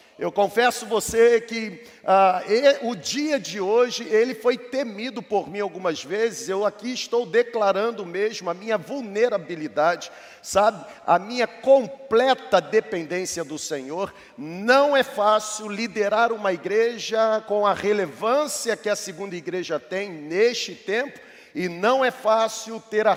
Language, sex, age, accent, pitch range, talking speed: Portuguese, male, 40-59, Brazilian, 195-230 Hz, 135 wpm